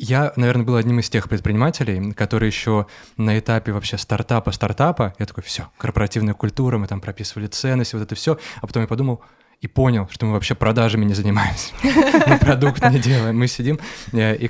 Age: 20-39